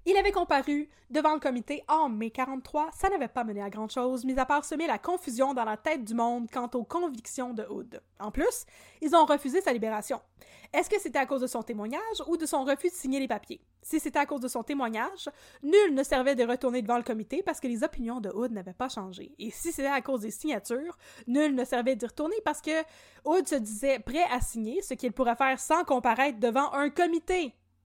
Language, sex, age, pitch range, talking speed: French, female, 20-39, 235-305 Hz, 235 wpm